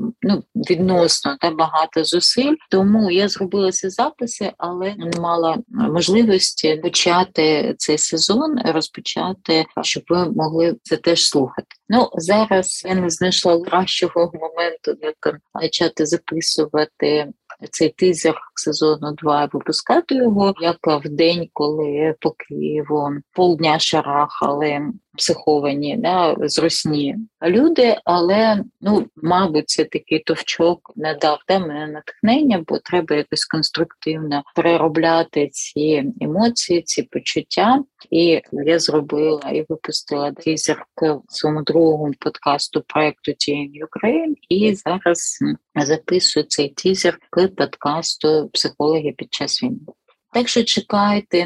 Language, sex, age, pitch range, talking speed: Ukrainian, female, 30-49, 155-190 Hz, 115 wpm